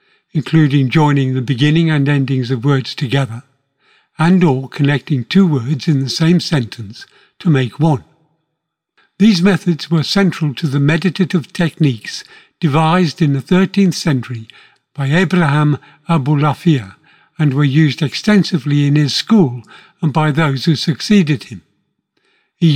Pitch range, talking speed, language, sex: 145-175 Hz, 135 wpm, English, male